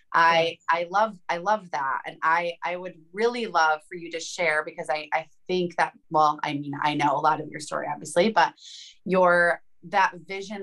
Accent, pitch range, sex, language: American, 165-195 Hz, female, English